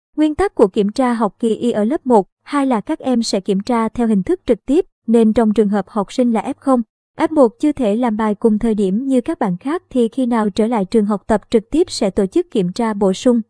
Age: 20-39